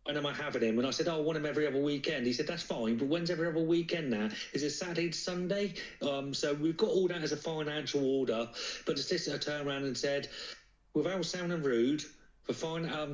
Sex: male